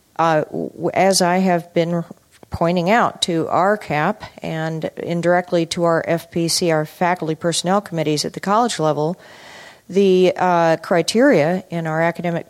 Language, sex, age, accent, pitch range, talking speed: English, female, 40-59, American, 165-205 Hz, 140 wpm